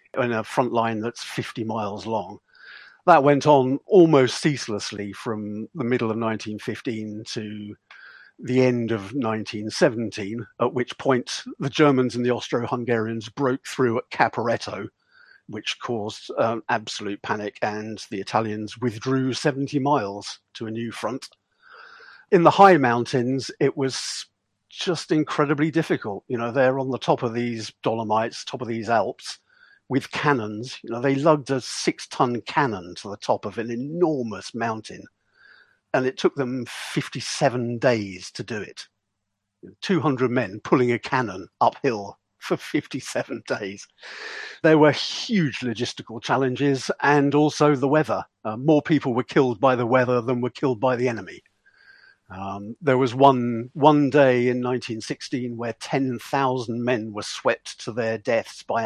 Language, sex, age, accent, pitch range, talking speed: English, male, 50-69, British, 110-140 Hz, 150 wpm